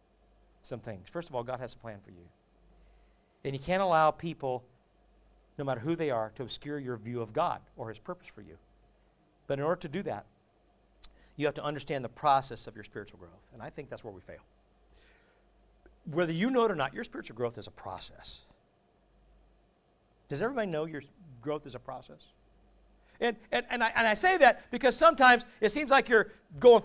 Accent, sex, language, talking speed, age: American, male, English, 200 wpm, 50-69